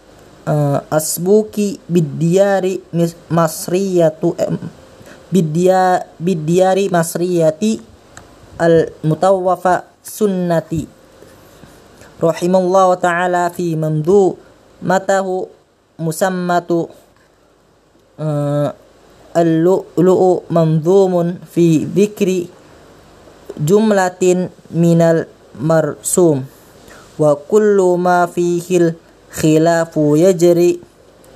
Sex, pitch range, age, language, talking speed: female, 150-185 Hz, 20-39, Arabic, 55 wpm